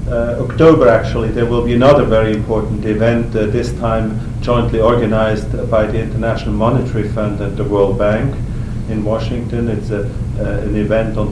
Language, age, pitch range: English, 50-69, 110-120 Hz